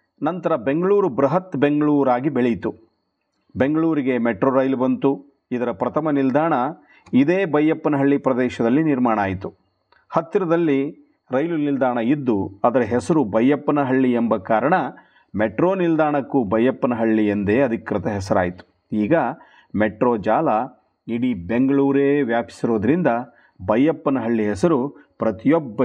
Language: Kannada